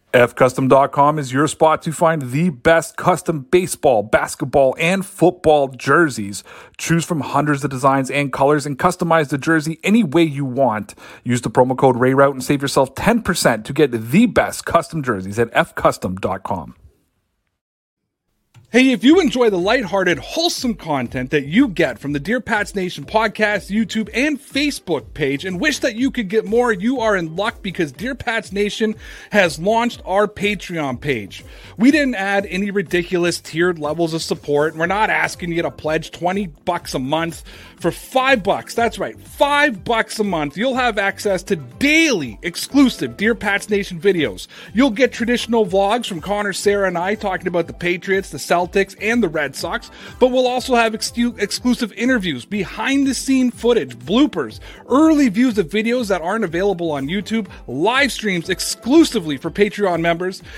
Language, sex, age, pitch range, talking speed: English, male, 30-49, 155-230 Hz, 170 wpm